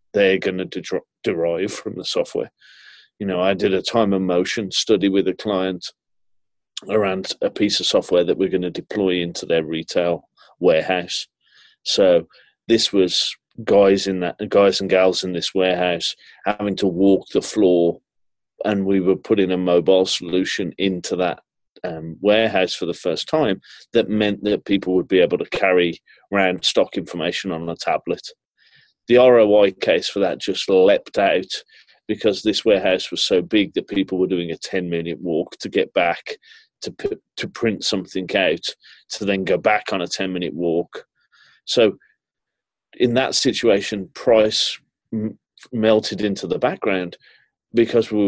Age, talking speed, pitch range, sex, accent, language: 30-49, 165 wpm, 90-105 Hz, male, British, English